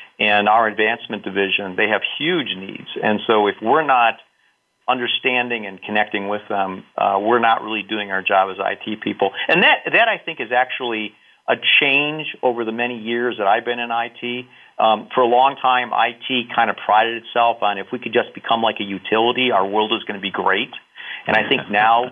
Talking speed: 205 wpm